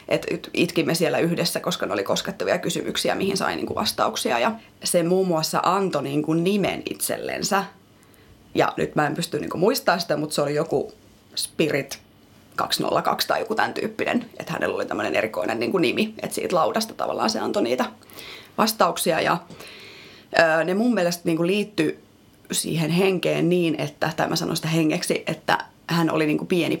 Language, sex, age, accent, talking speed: Finnish, female, 30-49, native, 165 wpm